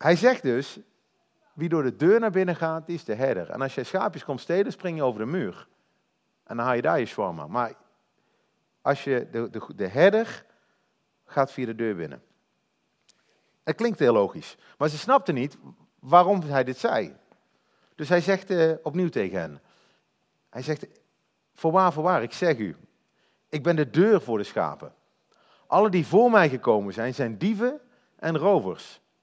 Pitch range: 130-195 Hz